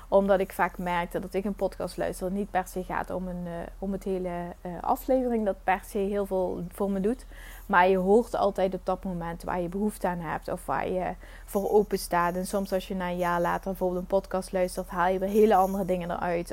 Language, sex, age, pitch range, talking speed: Dutch, female, 20-39, 175-195 Hz, 240 wpm